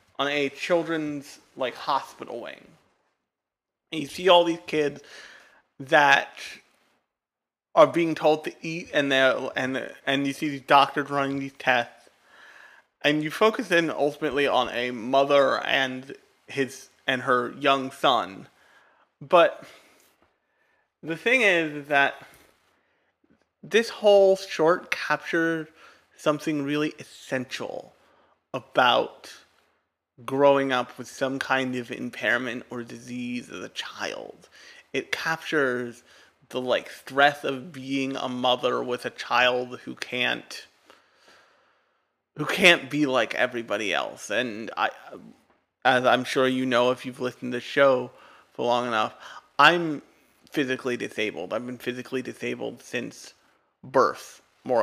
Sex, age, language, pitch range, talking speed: male, 30-49, English, 125-155 Hz, 125 wpm